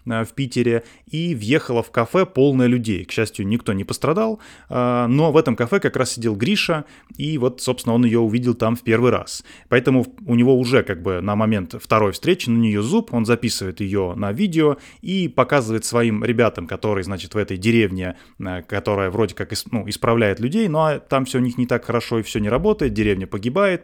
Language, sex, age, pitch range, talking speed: Russian, male, 20-39, 110-135 Hz, 195 wpm